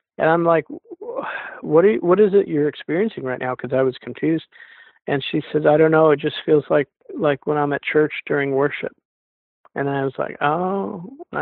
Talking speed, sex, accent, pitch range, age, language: 205 wpm, male, American, 130-155 Hz, 50-69, English